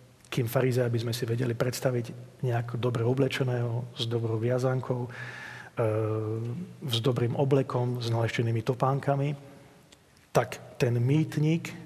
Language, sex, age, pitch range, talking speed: Slovak, male, 40-59, 120-140 Hz, 115 wpm